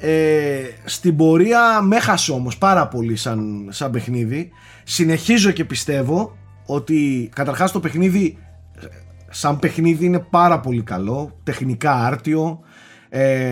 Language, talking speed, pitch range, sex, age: Greek, 120 wpm, 120-170 Hz, male, 30-49